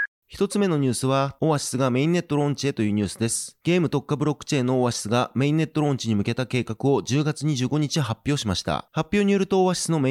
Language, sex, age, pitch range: Japanese, male, 30-49, 125-155 Hz